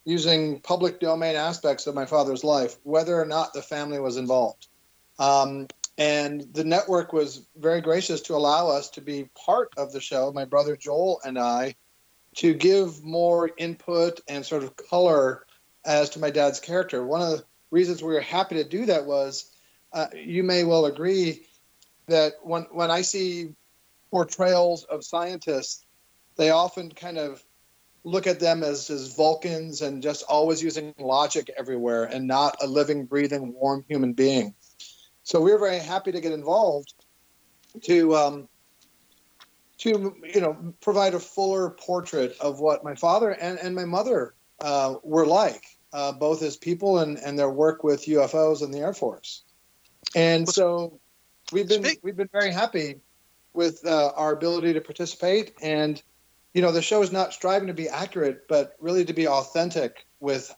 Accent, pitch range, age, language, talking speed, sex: American, 140-170 Hz, 40-59, English, 170 wpm, male